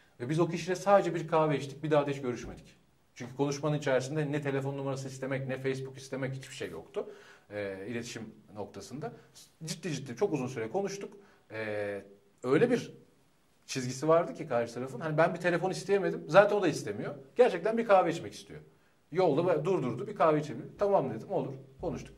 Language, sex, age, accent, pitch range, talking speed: Turkish, male, 40-59, native, 115-155 Hz, 180 wpm